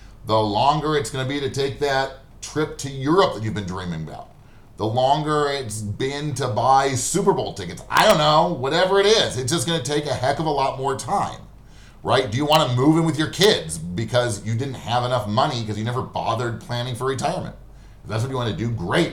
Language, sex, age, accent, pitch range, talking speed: English, male, 30-49, American, 110-145 Hz, 225 wpm